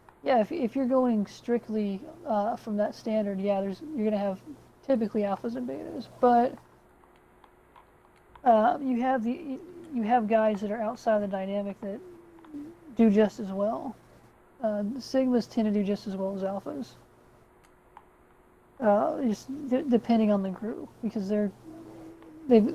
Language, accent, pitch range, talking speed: English, American, 210-255 Hz, 155 wpm